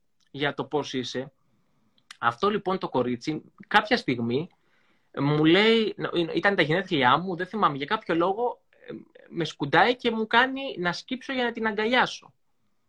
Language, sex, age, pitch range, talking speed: Greek, male, 20-39, 140-235 Hz, 150 wpm